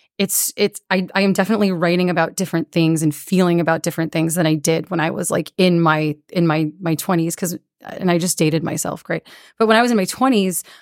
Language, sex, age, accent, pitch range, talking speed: English, female, 30-49, American, 165-190 Hz, 235 wpm